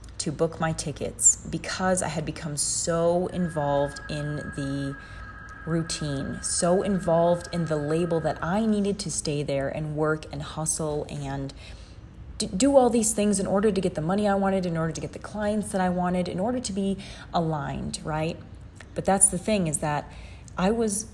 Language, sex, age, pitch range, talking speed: English, female, 30-49, 155-190 Hz, 180 wpm